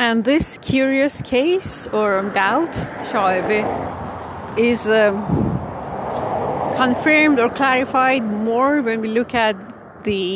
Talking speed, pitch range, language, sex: 95 wpm, 180-250 Hz, Persian, female